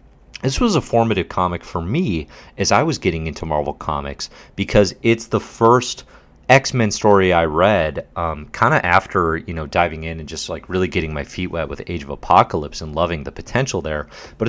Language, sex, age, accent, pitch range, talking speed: English, male, 30-49, American, 80-100 Hz, 200 wpm